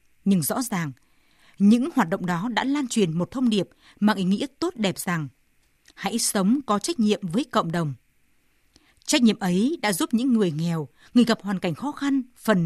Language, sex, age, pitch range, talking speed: Vietnamese, female, 20-39, 175-240 Hz, 200 wpm